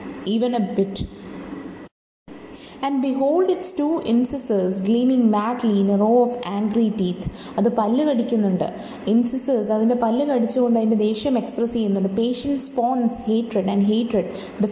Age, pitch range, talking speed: 20-39, 205-250 Hz, 145 wpm